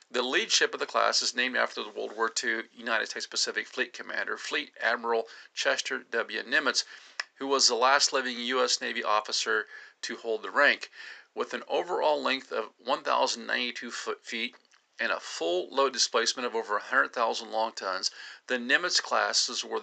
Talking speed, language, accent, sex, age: 170 wpm, English, American, male, 50-69